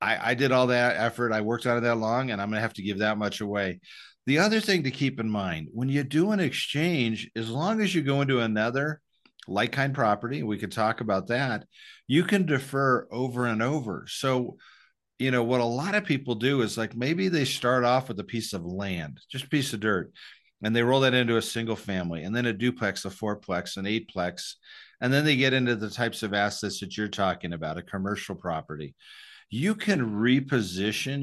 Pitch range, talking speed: 105-130 Hz, 220 wpm